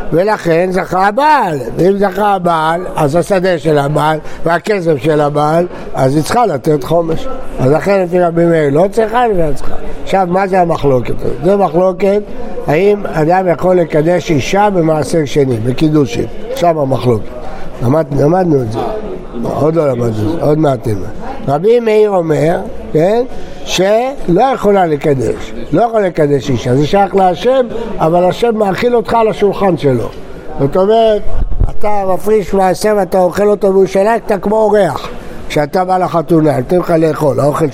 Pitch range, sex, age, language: 150-200 Hz, male, 60-79, Hebrew